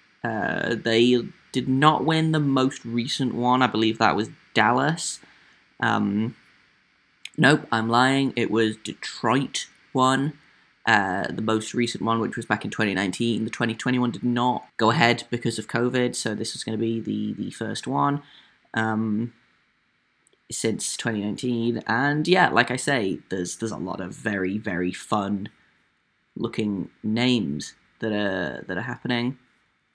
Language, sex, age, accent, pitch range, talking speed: English, male, 10-29, British, 105-125 Hz, 150 wpm